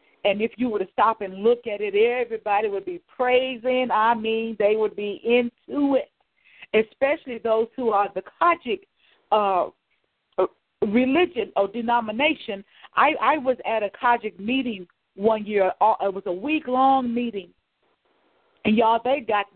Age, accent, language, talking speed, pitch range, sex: 40-59, American, English, 155 wpm, 215-285 Hz, female